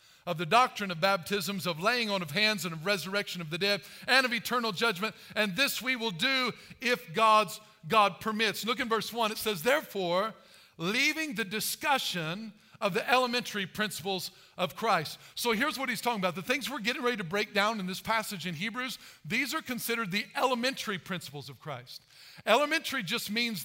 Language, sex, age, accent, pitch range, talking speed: English, male, 50-69, American, 195-255 Hz, 190 wpm